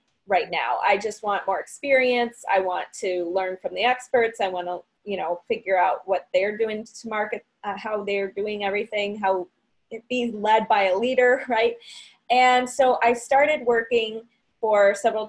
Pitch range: 195-235 Hz